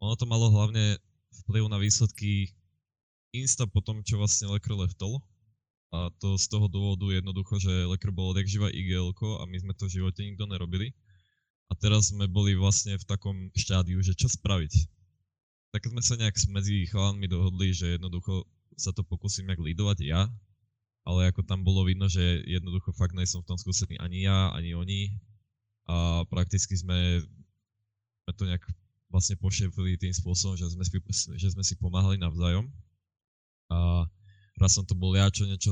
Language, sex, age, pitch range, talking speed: Slovak, male, 10-29, 90-100 Hz, 170 wpm